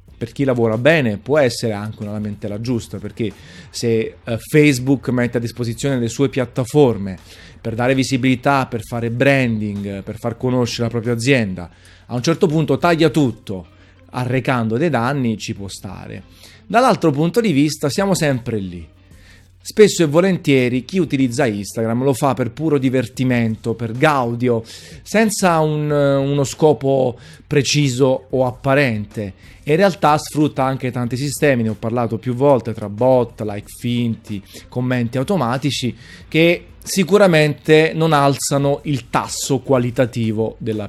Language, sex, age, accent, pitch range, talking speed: Italian, male, 30-49, native, 110-140 Hz, 140 wpm